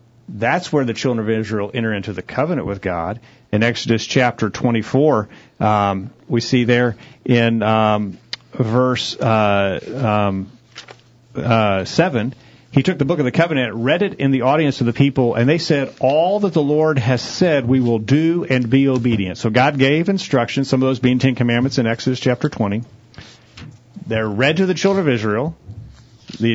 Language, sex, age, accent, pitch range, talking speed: English, male, 40-59, American, 120-150 Hz, 180 wpm